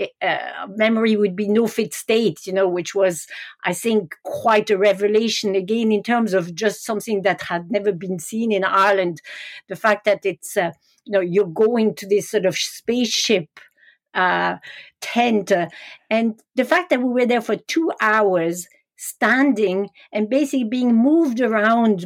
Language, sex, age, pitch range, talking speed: English, female, 50-69, 195-230 Hz, 170 wpm